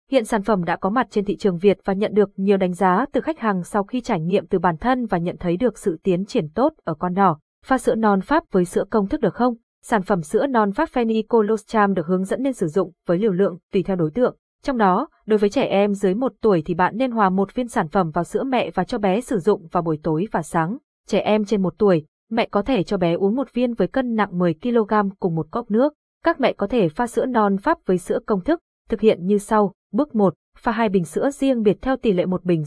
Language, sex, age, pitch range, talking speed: Vietnamese, female, 20-39, 185-235 Hz, 270 wpm